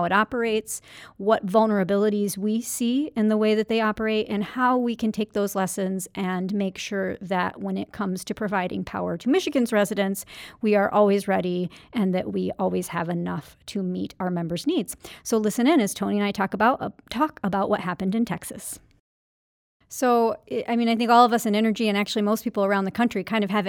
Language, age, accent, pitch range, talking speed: English, 40-59, American, 195-230 Hz, 210 wpm